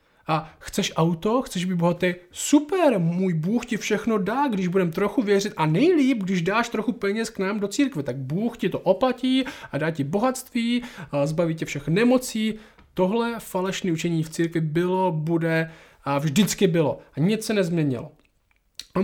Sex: male